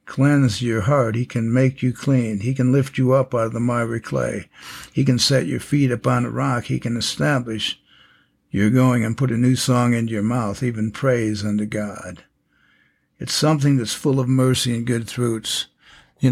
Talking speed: 195 wpm